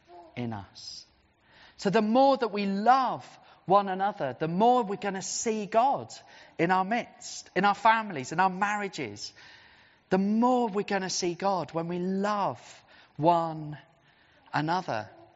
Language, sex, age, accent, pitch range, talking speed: English, male, 30-49, British, 170-235 Hz, 150 wpm